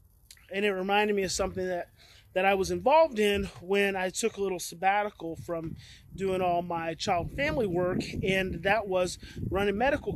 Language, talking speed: English, 175 wpm